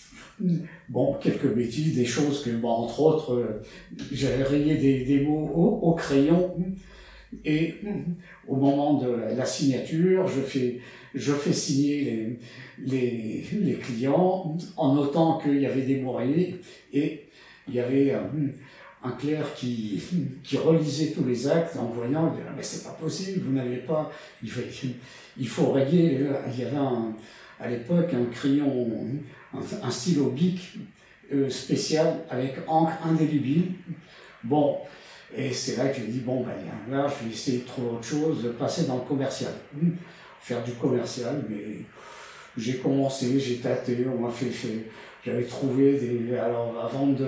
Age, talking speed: 60-79, 155 wpm